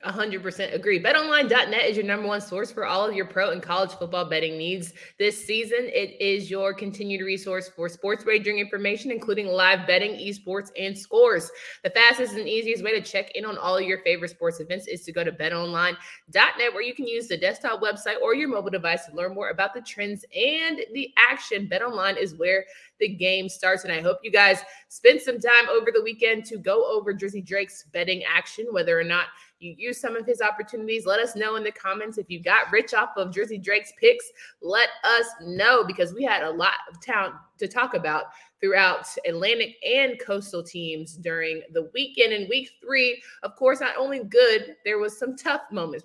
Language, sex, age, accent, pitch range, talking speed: English, female, 20-39, American, 185-270 Hz, 205 wpm